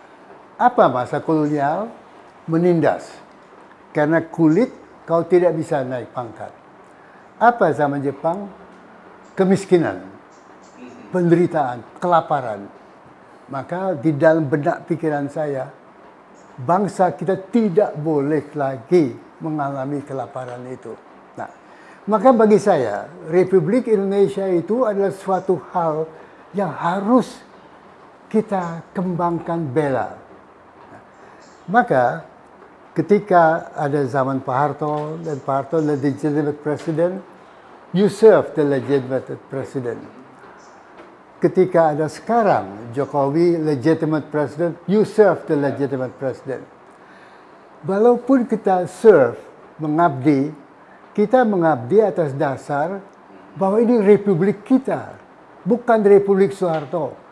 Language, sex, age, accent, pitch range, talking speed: Indonesian, male, 60-79, native, 150-195 Hz, 95 wpm